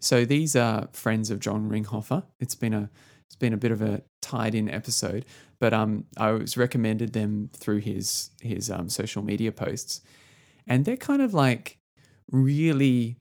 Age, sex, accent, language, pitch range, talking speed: 20-39, male, Australian, English, 110-130 Hz, 175 wpm